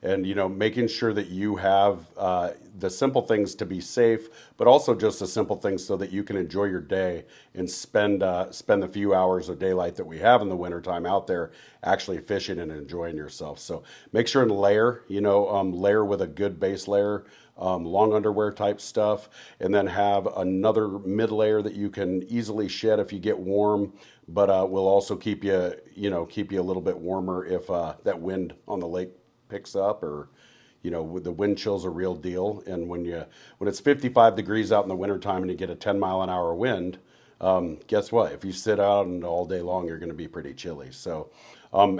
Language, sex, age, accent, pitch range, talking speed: English, male, 40-59, American, 90-105 Hz, 225 wpm